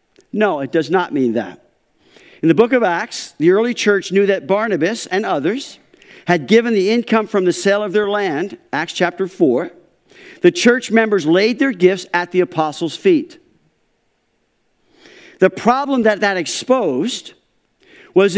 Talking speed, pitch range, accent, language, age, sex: 155 wpm, 185-245 Hz, American, English, 50-69, male